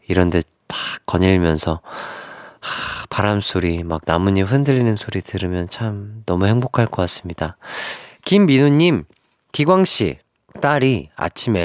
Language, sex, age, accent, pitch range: Korean, male, 40-59, native, 95-155 Hz